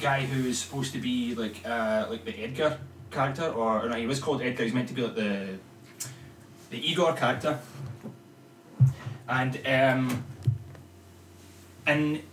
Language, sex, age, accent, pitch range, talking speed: English, male, 20-39, British, 110-150 Hz, 150 wpm